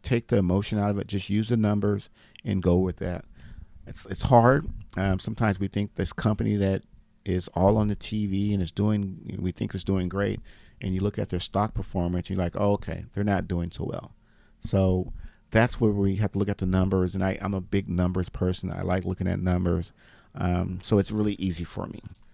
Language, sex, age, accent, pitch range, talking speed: English, male, 50-69, American, 90-105 Hz, 220 wpm